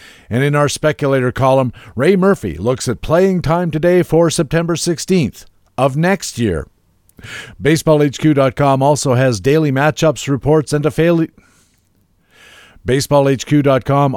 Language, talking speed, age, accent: English, 120 wpm, 50-69, American